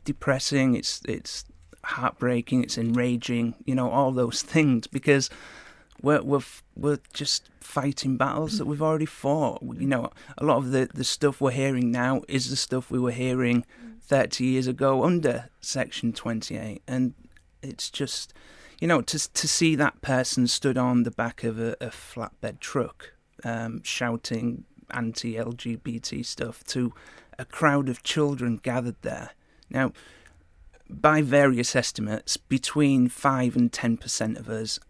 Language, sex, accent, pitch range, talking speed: English, male, British, 120-145 Hz, 150 wpm